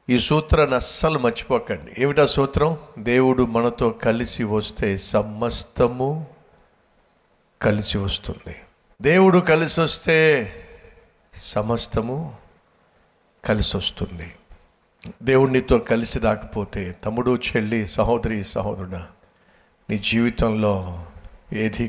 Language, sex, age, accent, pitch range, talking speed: Telugu, male, 60-79, native, 105-140 Hz, 80 wpm